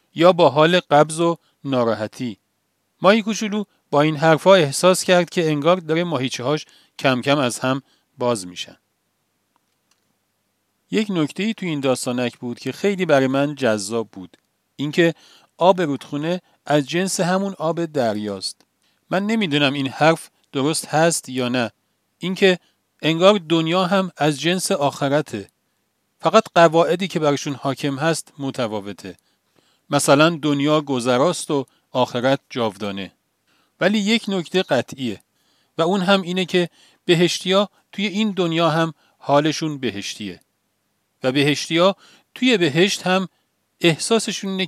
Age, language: 40-59, Persian